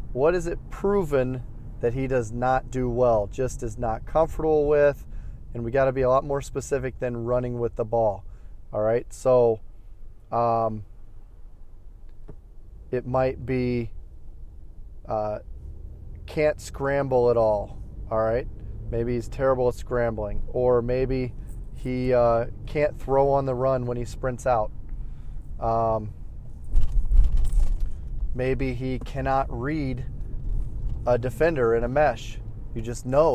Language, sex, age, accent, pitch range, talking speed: English, male, 30-49, American, 110-130 Hz, 130 wpm